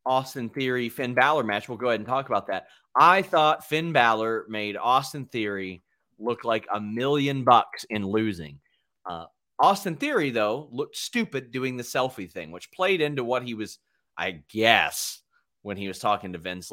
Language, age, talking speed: English, 30-49, 175 wpm